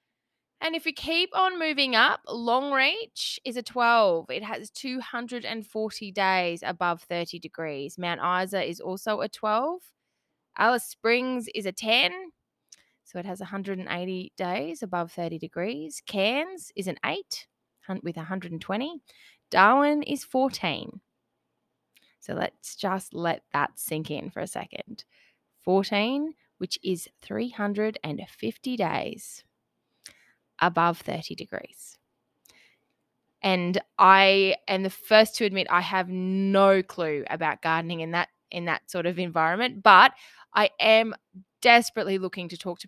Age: 20-39